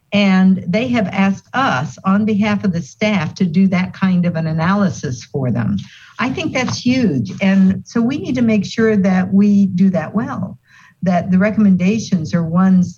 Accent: American